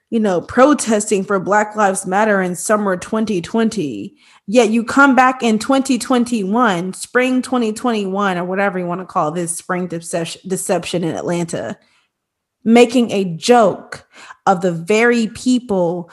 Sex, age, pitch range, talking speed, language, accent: female, 20-39, 195-260 Hz, 135 wpm, English, American